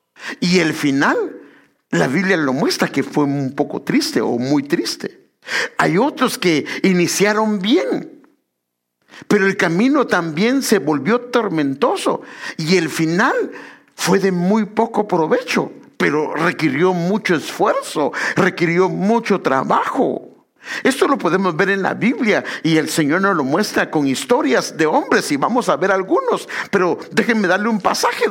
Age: 50-69